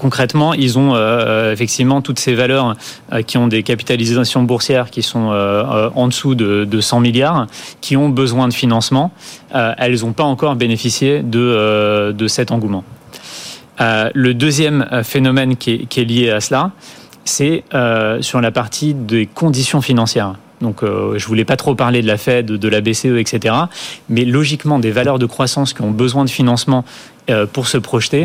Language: French